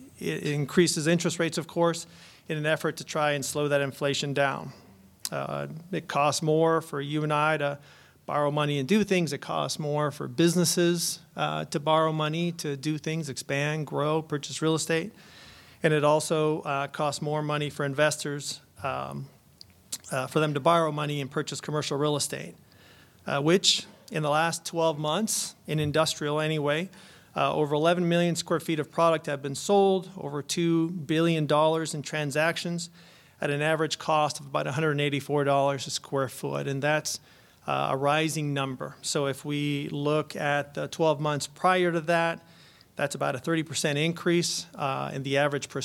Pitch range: 140-165 Hz